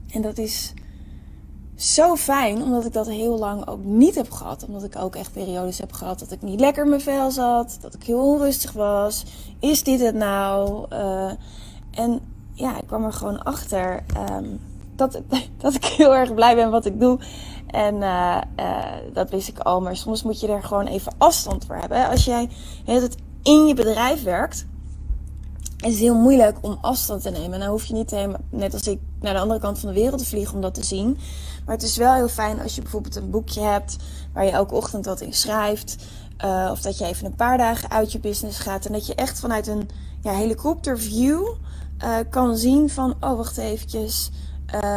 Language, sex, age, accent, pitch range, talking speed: Dutch, female, 20-39, Dutch, 185-235 Hz, 210 wpm